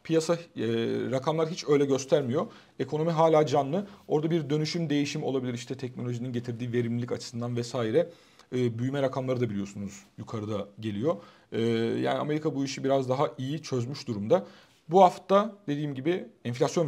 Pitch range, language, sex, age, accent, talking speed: 125-165 Hz, Turkish, male, 40-59, native, 150 wpm